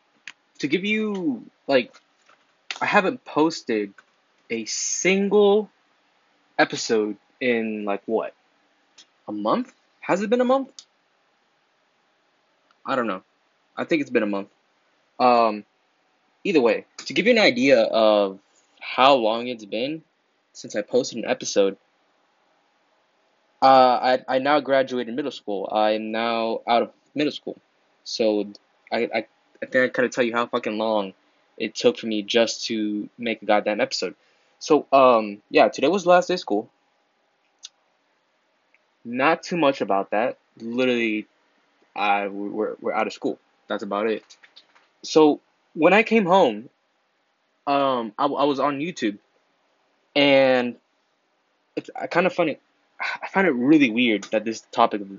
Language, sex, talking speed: English, male, 145 wpm